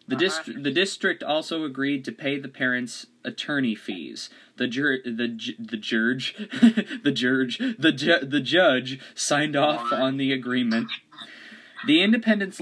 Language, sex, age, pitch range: English, male, 20-39, 125-165 Hz